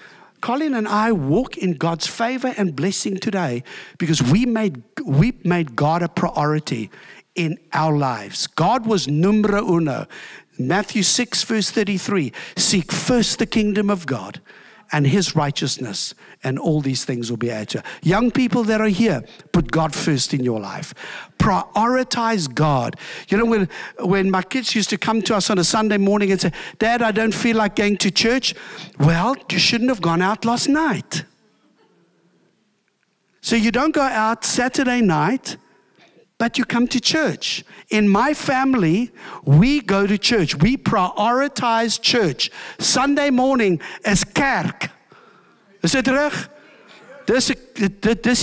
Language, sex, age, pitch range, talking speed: English, male, 60-79, 175-245 Hz, 155 wpm